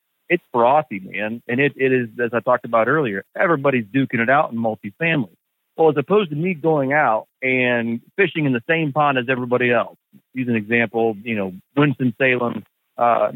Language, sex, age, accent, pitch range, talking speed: English, male, 40-59, American, 110-135 Hz, 185 wpm